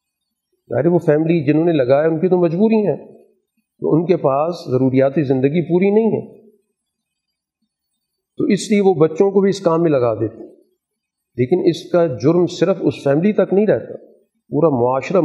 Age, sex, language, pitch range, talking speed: 50-69, male, Urdu, 140-190 Hz, 175 wpm